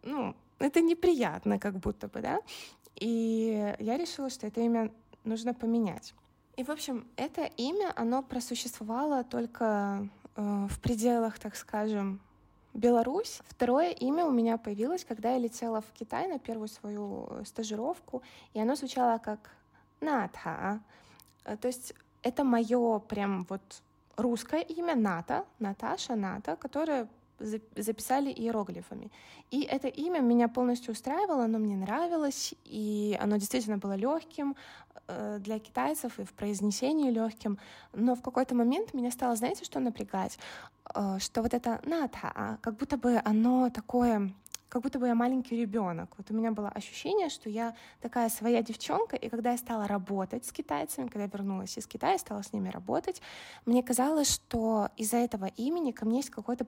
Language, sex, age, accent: Russian, female, 20-39, native